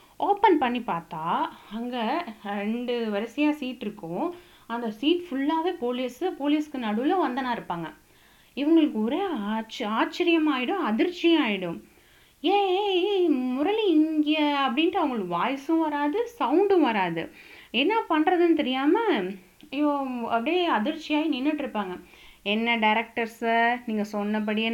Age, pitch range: 20-39, 210-295 Hz